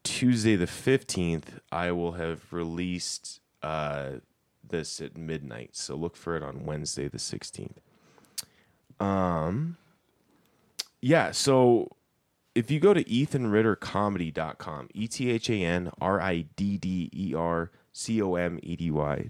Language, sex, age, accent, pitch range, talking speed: English, male, 20-39, American, 85-100 Hz, 135 wpm